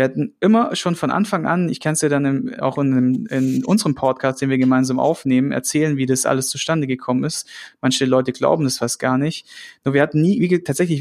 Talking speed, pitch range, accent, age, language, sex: 215 wpm, 140-165 Hz, German, 30-49, German, male